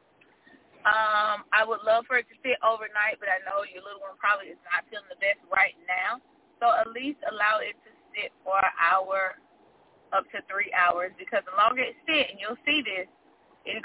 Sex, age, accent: female, 20-39, American